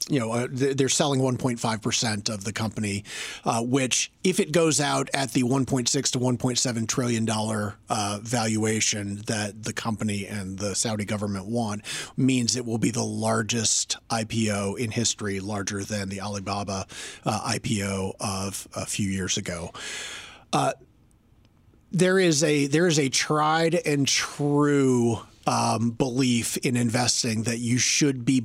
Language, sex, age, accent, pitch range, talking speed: English, male, 40-59, American, 110-135 Hz, 145 wpm